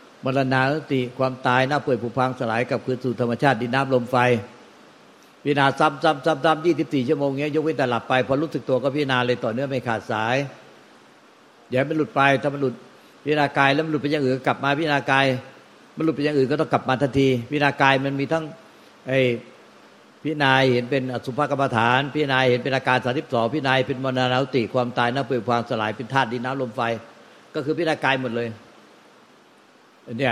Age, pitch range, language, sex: 60-79, 125-145 Hz, Thai, male